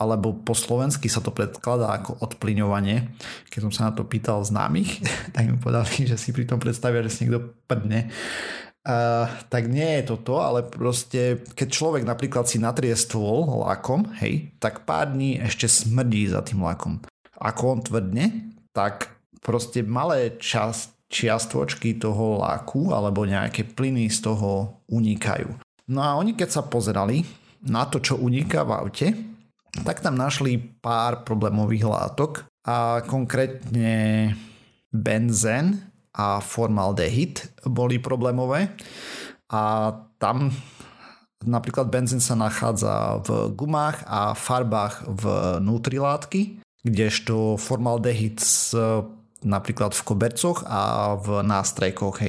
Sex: male